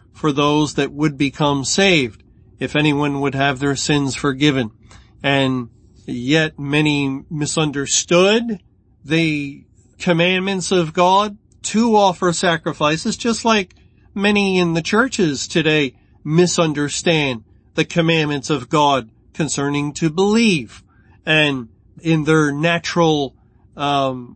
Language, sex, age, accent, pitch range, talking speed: English, male, 40-59, American, 140-175 Hz, 110 wpm